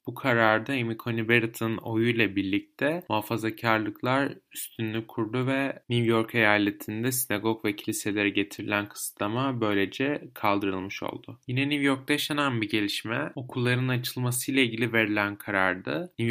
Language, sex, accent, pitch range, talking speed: Turkish, male, native, 110-130 Hz, 125 wpm